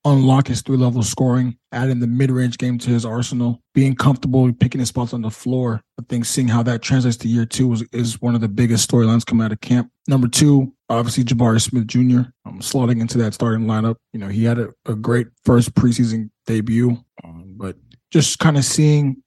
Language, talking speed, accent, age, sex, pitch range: English, 205 wpm, American, 20-39, male, 110-130 Hz